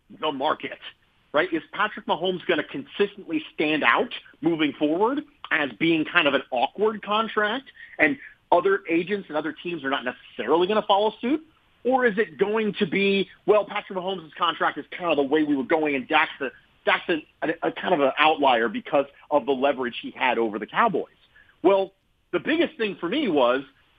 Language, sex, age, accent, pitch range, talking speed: English, male, 40-59, American, 155-225 Hz, 195 wpm